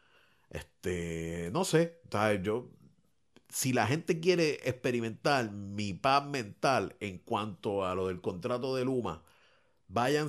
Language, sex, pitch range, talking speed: Spanish, male, 90-135 Hz, 130 wpm